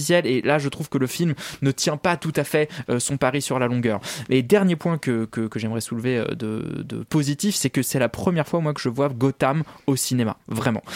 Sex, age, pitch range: male, 20-39, 120-150 Hz